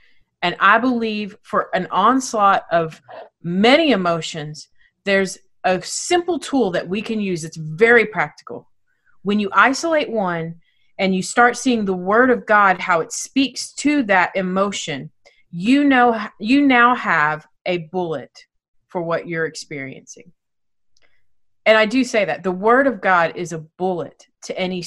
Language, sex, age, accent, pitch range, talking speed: English, female, 30-49, American, 155-215 Hz, 150 wpm